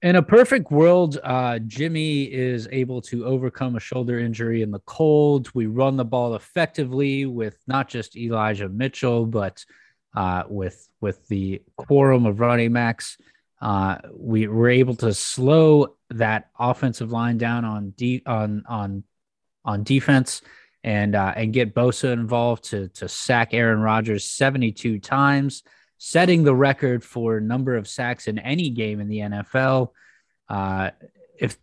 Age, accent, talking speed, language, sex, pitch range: 20-39, American, 150 wpm, English, male, 105-130 Hz